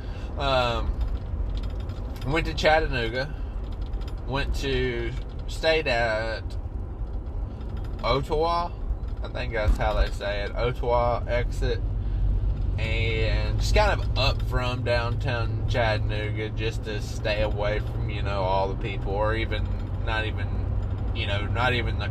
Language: English